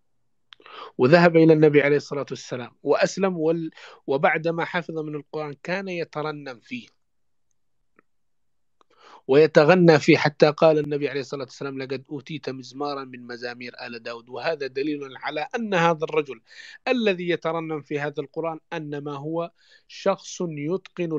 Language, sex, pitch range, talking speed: English, male, 150-180 Hz, 125 wpm